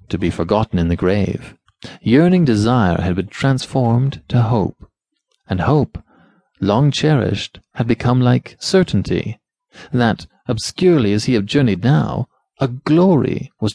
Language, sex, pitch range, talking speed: English, male, 105-170 Hz, 135 wpm